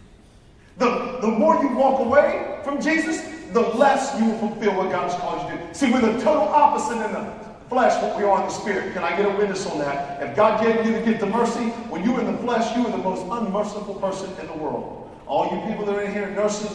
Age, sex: 40-59, male